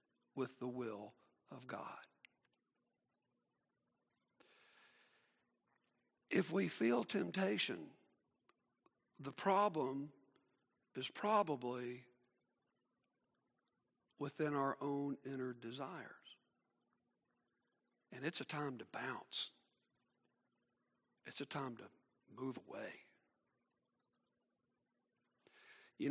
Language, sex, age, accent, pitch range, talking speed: English, male, 60-79, American, 130-165 Hz, 70 wpm